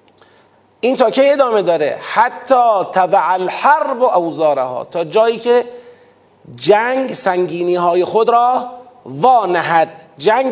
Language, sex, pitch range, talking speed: Persian, male, 205-255 Hz, 120 wpm